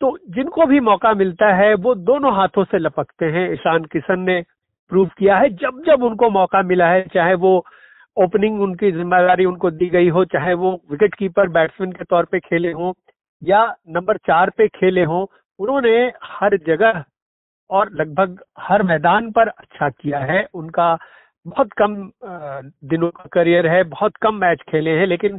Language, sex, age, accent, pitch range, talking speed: Hindi, male, 50-69, native, 180-220 Hz, 175 wpm